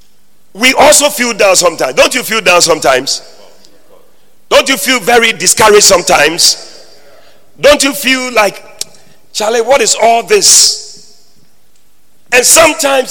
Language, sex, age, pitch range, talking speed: English, male, 40-59, 215-300 Hz, 125 wpm